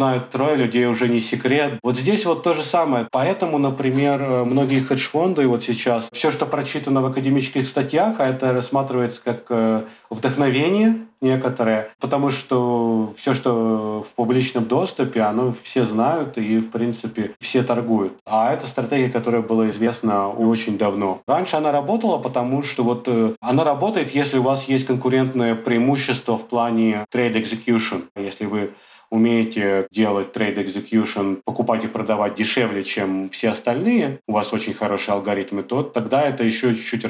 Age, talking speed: 30-49, 150 wpm